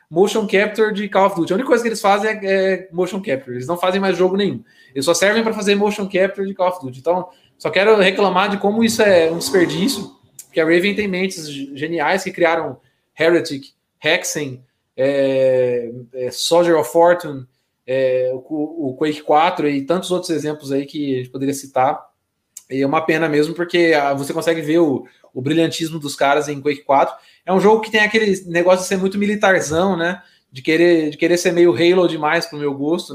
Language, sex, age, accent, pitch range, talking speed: Portuguese, male, 20-39, Brazilian, 140-190 Hz, 205 wpm